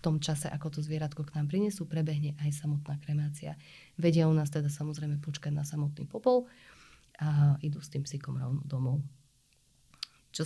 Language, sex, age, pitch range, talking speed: Slovak, female, 20-39, 150-155 Hz, 160 wpm